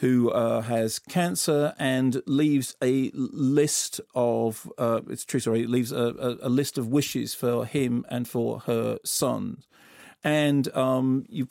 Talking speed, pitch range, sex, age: 155 wpm, 120-135 Hz, male, 40-59